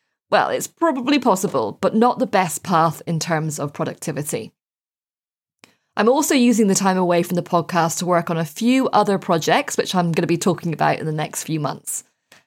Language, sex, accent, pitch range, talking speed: English, female, British, 170-230 Hz, 195 wpm